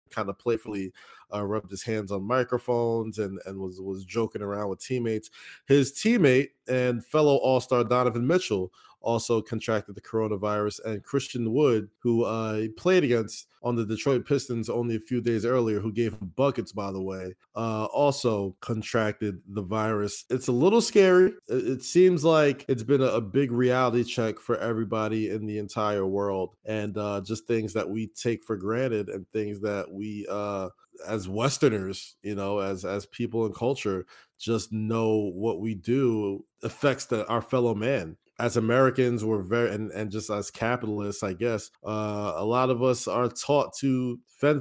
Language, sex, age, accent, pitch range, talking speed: English, male, 20-39, American, 105-125 Hz, 175 wpm